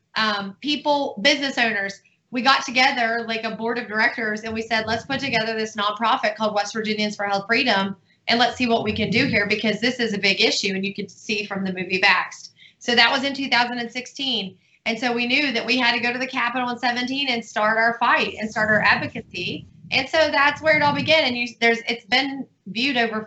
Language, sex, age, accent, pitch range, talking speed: English, female, 30-49, American, 210-260 Hz, 230 wpm